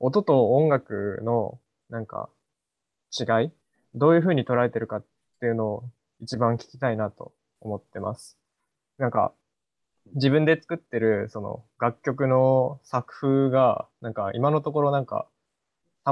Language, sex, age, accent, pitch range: Japanese, male, 20-39, native, 110-140 Hz